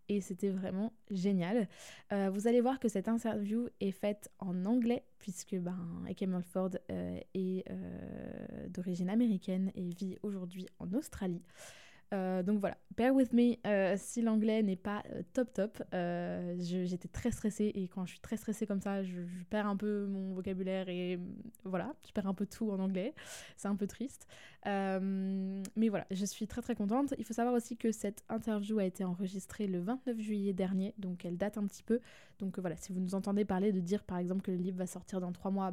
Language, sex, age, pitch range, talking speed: French, female, 20-39, 185-220 Hz, 205 wpm